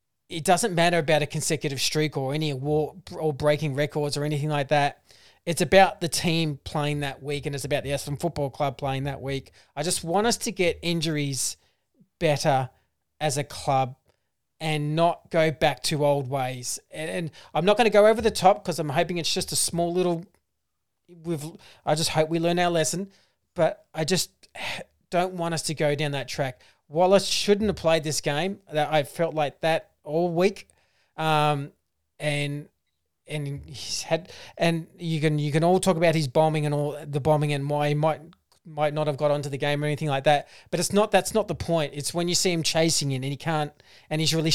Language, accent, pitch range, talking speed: English, Australian, 145-170 Hz, 210 wpm